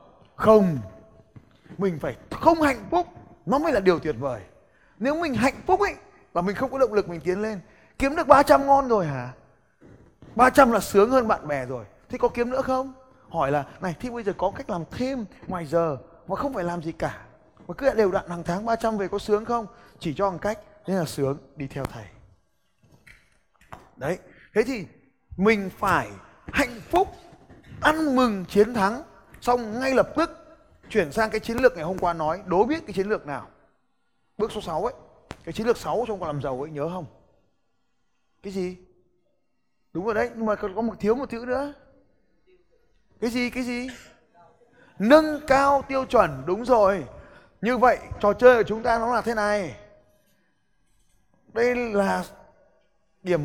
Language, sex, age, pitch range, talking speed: Vietnamese, male, 20-39, 175-250 Hz, 185 wpm